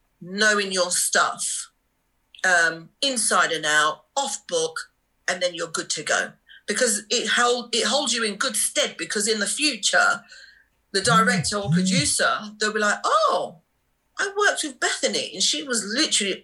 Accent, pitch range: British, 190-275 Hz